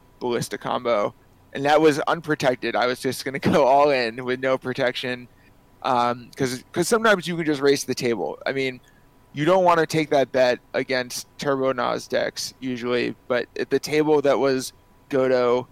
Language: English